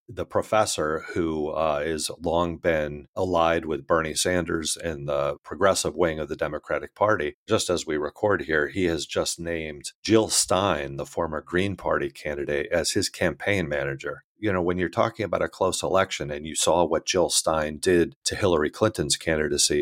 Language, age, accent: English, 40-59, American